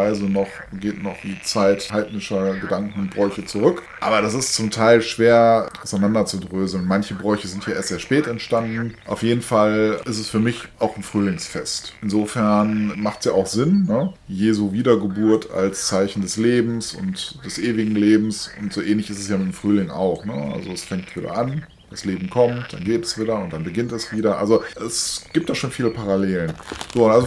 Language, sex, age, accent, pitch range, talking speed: German, male, 20-39, German, 100-120 Hz, 190 wpm